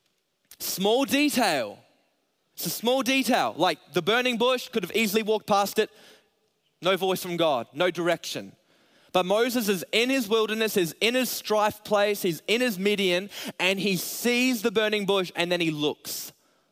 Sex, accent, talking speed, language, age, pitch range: male, Australian, 170 wpm, English, 20-39, 170-210 Hz